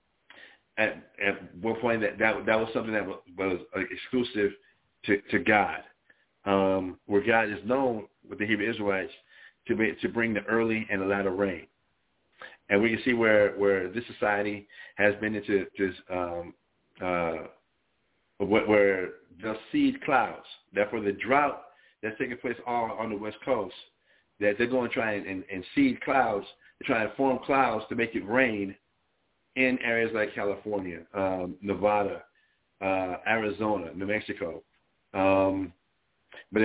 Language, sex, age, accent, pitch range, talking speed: English, male, 50-69, American, 100-120 Hz, 155 wpm